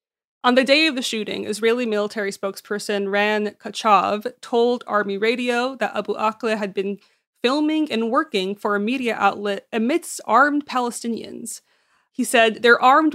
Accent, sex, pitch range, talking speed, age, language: American, female, 200-245 Hz, 150 wpm, 20-39, English